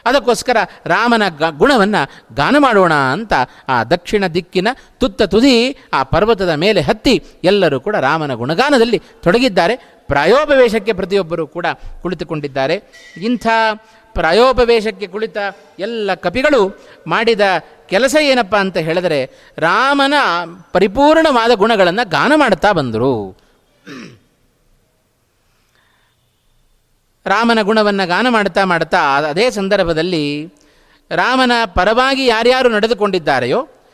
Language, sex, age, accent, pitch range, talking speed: Kannada, male, 30-49, native, 180-250 Hz, 90 wpm